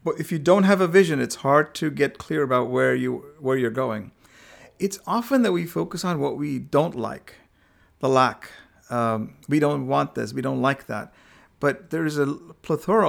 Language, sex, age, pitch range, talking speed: English, male, 40-59, 125-160 Hz, 205 wpm